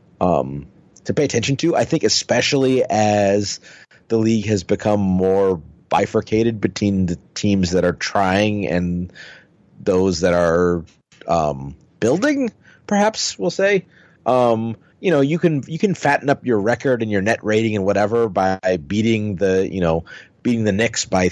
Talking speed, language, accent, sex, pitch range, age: 160 wpm, English, American, male, 90-115 Hz, 30-49